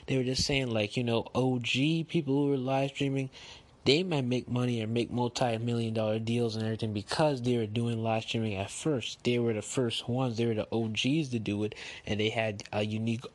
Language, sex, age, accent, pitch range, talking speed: English, male, 20-39, American, 110-130 Hz, 220 wpm